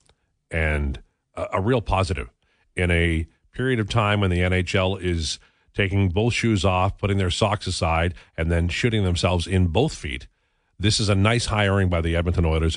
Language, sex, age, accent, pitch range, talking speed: English, male, 50-69, American, 90-120 Hz, 175 wpm